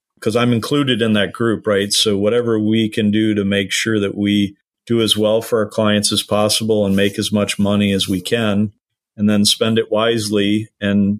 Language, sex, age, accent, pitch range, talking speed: English, male, 40-59, American, 100-115 Hz, 210 wpm